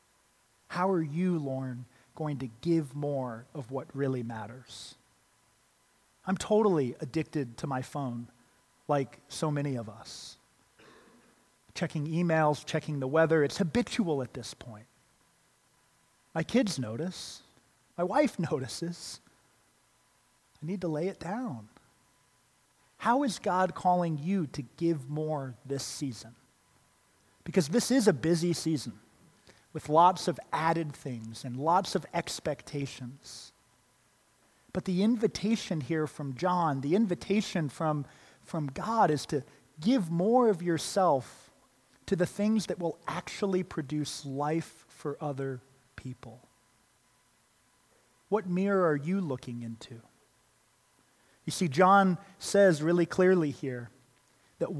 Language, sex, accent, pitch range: English, male, American, 130-180 Hz